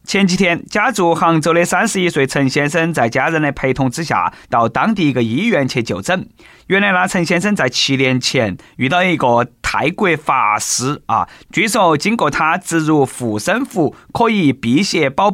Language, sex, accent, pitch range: Chinese, male, native, 135-205 Hz